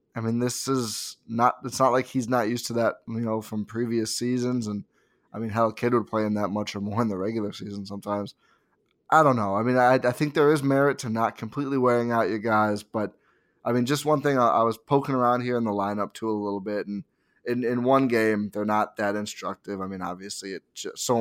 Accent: American